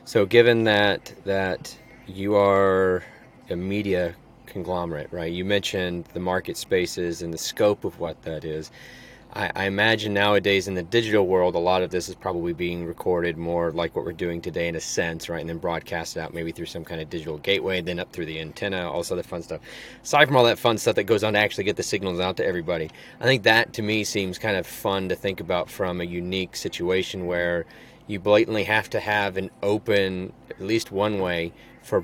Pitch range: 85-105 Hz